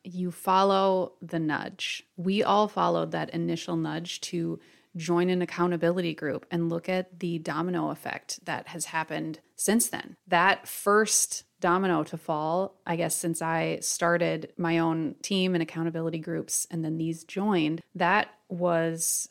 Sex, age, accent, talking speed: female, 30-49, American, 150 wpm